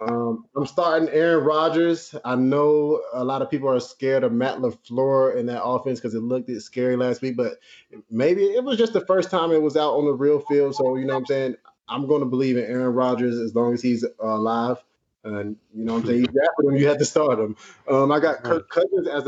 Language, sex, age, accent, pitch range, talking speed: English, male, 20-39, American, 115-145 Hz, 235 wpm